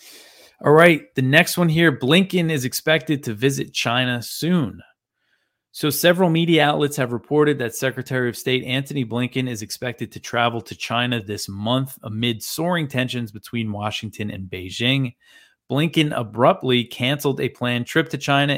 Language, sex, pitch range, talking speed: English, male, 110-135 Hz, 155 wpm